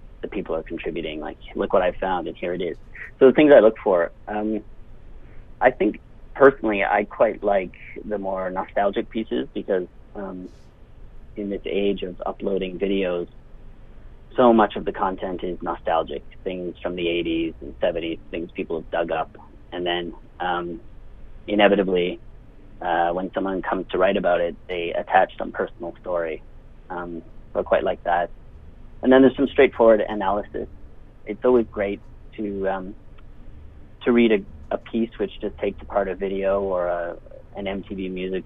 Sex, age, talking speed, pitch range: male, 30-49, 165 wpm, 85-105 Hz